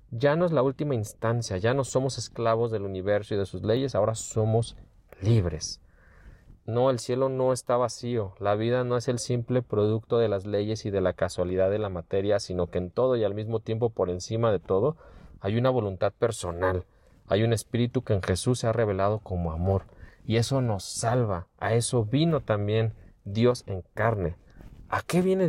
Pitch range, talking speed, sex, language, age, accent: 100-130 Hz, 195 wpm, male, Spanish, 40-59, Mexican